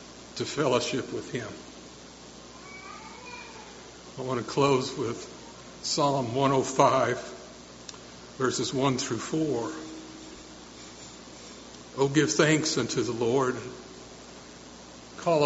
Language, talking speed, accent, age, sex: English, 85 wpm, American, 60-79, male